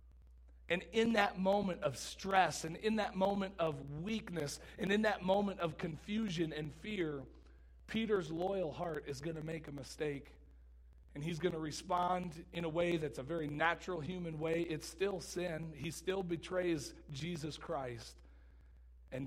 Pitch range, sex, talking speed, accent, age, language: 120-170 Hz, male, 160 wpm, American, 40-59, English